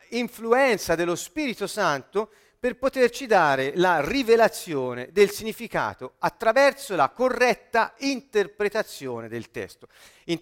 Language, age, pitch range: Italian, 40-59, 160-225 Hz